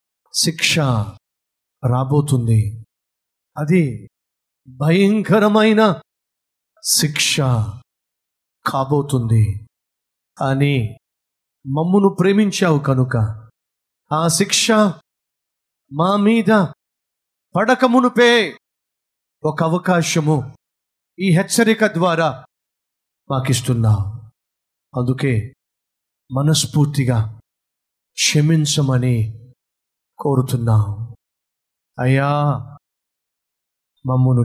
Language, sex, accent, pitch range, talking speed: Telugu, male, native, 125-185 Hz, 35 wpm